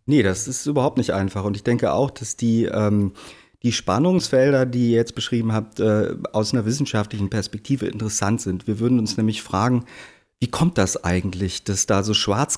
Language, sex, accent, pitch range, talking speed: German, male, German, 105-125 Hz, 185 wpm